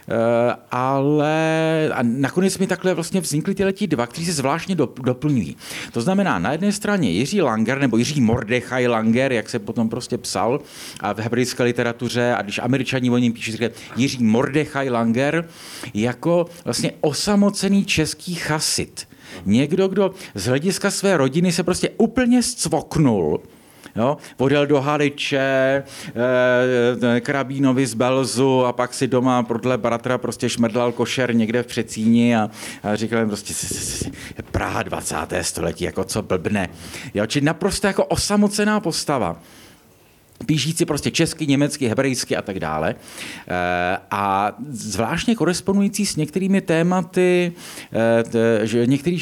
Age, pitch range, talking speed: 50-69, 120-170 Hz, 130 wpm